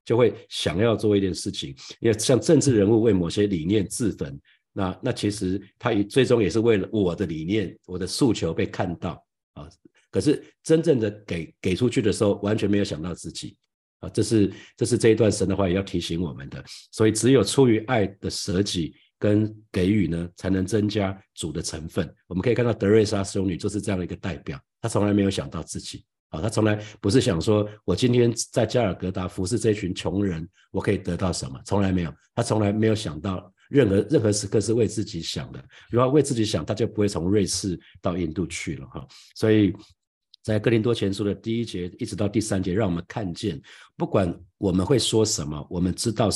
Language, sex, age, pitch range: Chinese, male, 50-69, 95-110 Hz